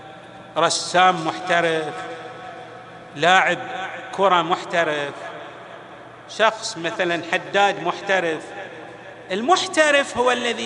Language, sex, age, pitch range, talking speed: Arabic, male, 50-69, 155-235 Hz, 70 wpm